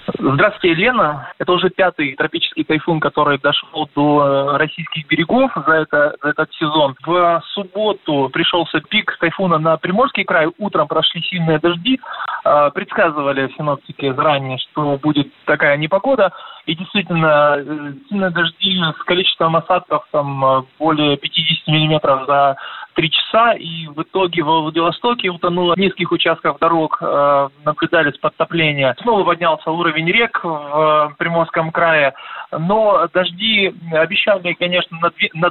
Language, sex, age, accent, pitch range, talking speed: Russian, male, 20-39, native, 150-180 Hz, 125 wpm